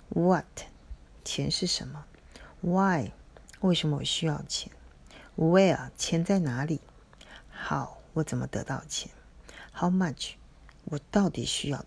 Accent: native